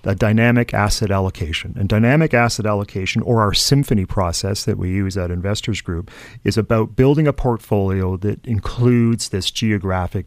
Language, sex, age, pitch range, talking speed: English, male, 40-59, 100-130 Hz, 150 wpm